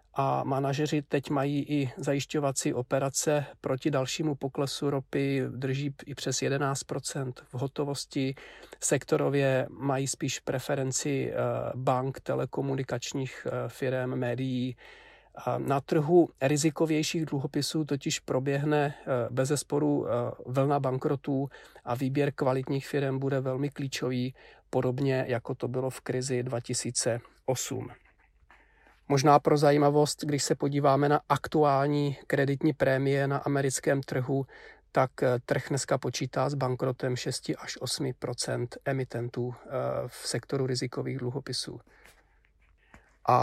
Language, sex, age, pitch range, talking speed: Czech, male, 40-59, 130-145 Hz, 105 wpm